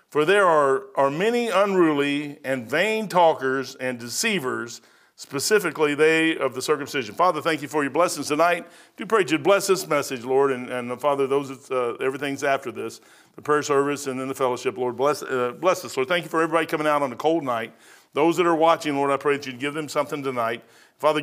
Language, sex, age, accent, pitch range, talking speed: English, male, 50-69, American, 145-195 Hz, 220 wpm